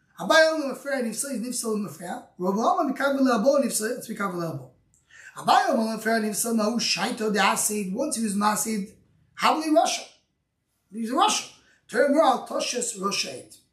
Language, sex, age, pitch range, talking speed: English, male, 20-39, 200-275 Hz, 150 wpm